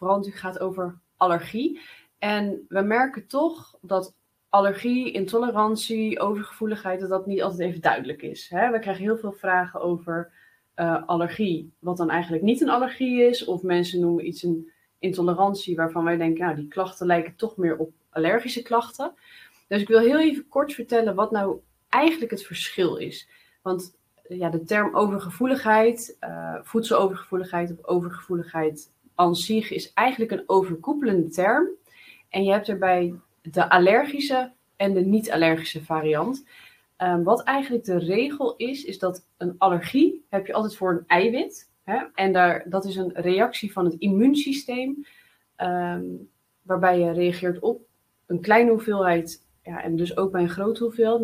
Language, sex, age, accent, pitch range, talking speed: Dutch, female, 20-39, Dutch, 175-225 Hz, 150 wpm